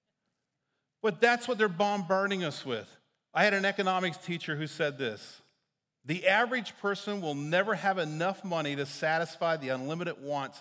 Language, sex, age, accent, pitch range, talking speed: English, male, 40-59, American, 140-185 Hz, 160 wpm